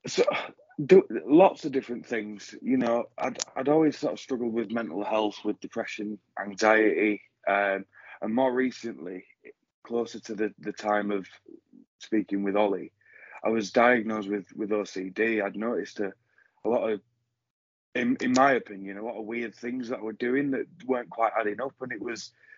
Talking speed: 180 wpm